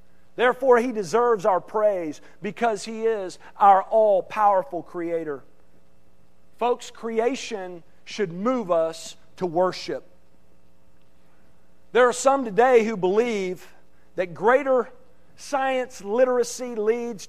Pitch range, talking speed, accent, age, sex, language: 160-260 Hz, 100 wpm, American, 50-69, male, English